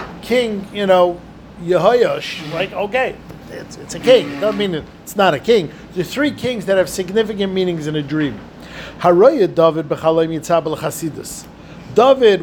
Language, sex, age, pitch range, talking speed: English, male, 50-69, 165-215 Hz, 155 wpm